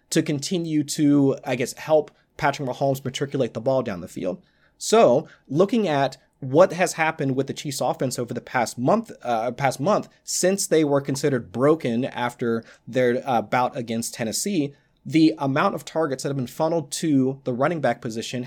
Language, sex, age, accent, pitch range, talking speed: English, male, 30-49, American, 130-160 Hz, 180 wpm